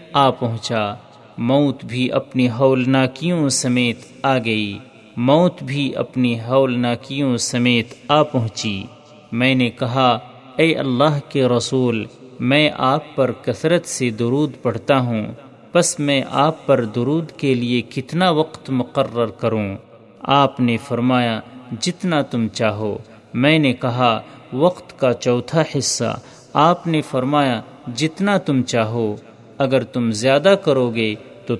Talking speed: 130 wpm